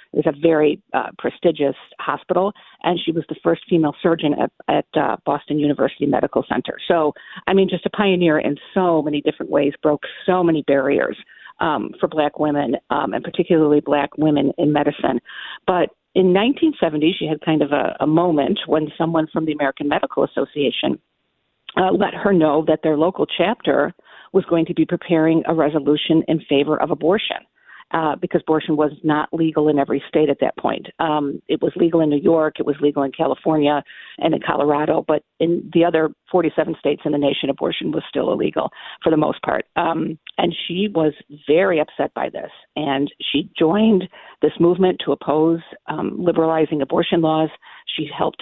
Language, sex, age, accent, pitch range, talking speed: English, female, 50-69, American, 150-175 Hz, 185 wpm